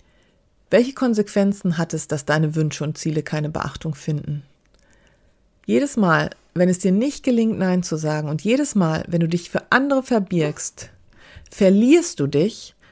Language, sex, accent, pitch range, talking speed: German, female, German, 165-205 Hz, 160 wpm